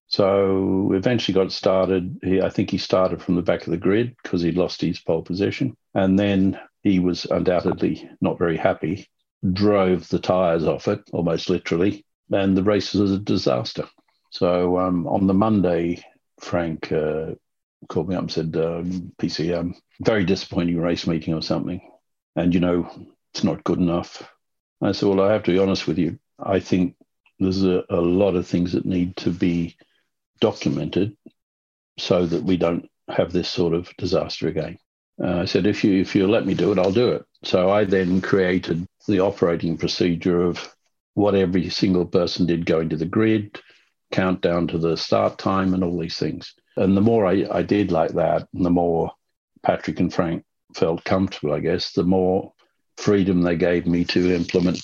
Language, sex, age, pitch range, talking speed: English, male, 60-79, 85-95 Hz, 185 wpm